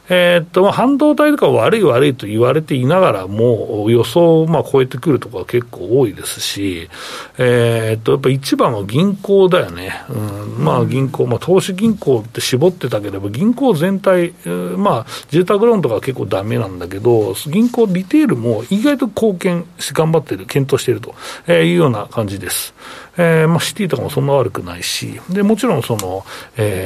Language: Japanese